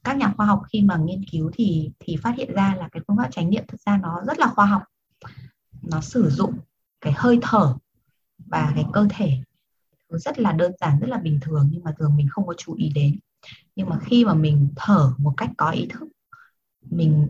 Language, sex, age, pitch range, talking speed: Vietnamese, female, 20-39, 155-215 Hz, 225 wpm